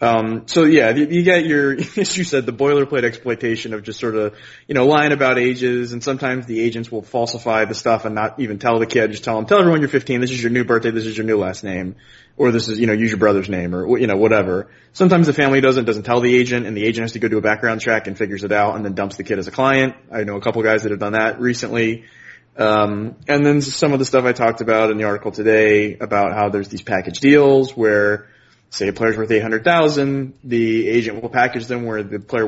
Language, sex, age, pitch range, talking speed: English, male, 20-39, 110-125 Hz, 260 wpm